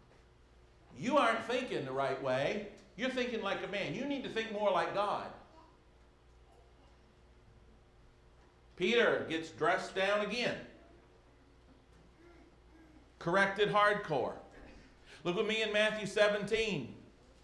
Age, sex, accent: 50-69, male, American